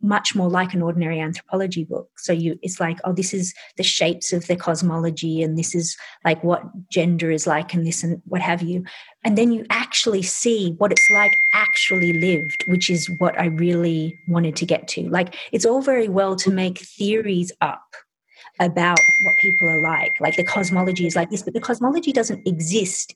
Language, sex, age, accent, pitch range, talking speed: English, female, 30-49, Australian, 170-205 Hz, 200 wpm